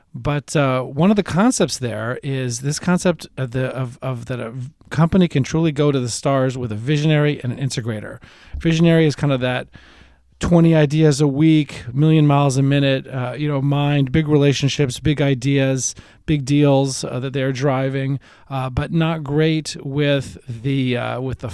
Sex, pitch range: male, 125-150 Hz